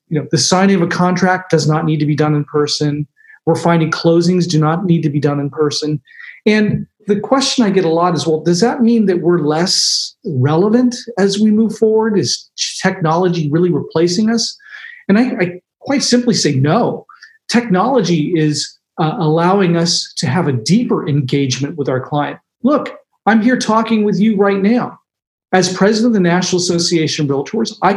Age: 40-59